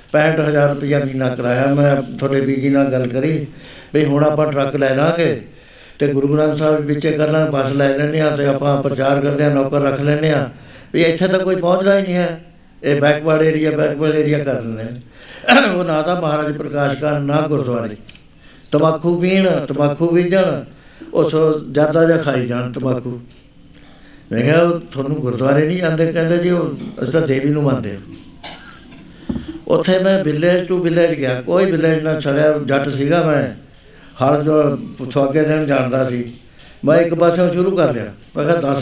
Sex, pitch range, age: male, 135-165 Hz, 60-79